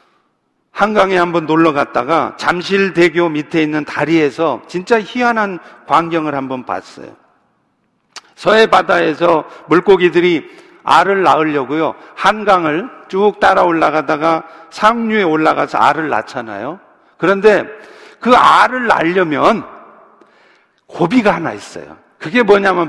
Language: Korean